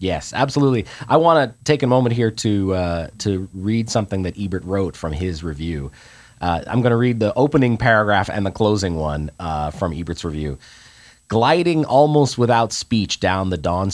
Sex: male